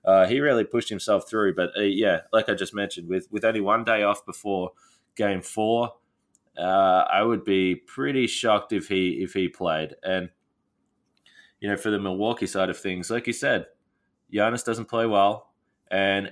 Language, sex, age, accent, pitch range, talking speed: English, male, 20-39, Australian, 95-115 Hz, 185 wpm